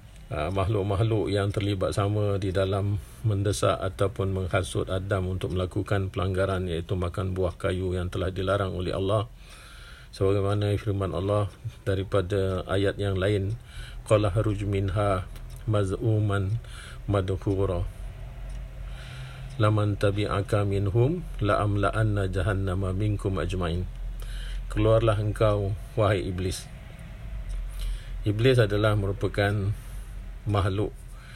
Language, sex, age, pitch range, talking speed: Malay, male, 50-69, 95-105 Hz, 95 wpm